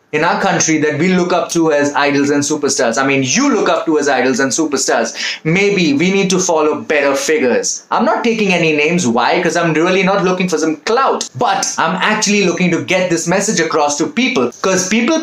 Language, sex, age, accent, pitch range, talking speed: English, male, 20-39, Indian, 150-225 Hz, 220 wpm